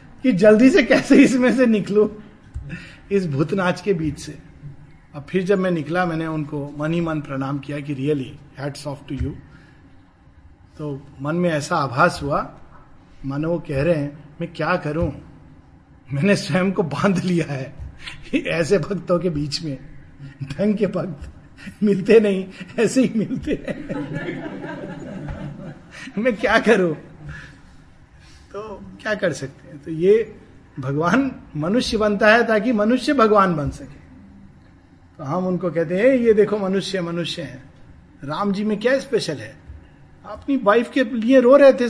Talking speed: 145 wpm